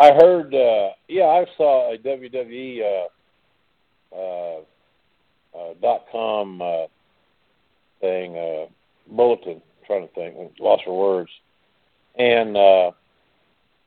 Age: 50-69